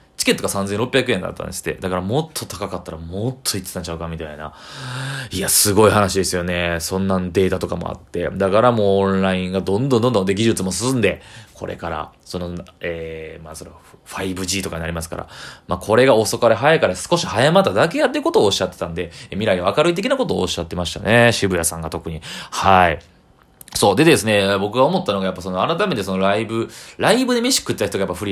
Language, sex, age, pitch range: Japanese, male, 20-39, 90-115 Hz